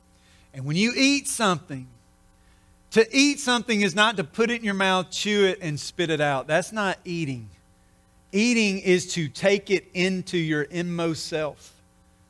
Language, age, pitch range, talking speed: English, 40-59, 145-195 Hz, 165 wpm